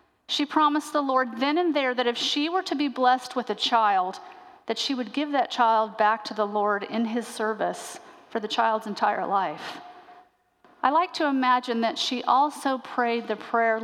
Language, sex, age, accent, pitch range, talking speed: English, female, 40-59, American, 230-300 Hz, 195 wpm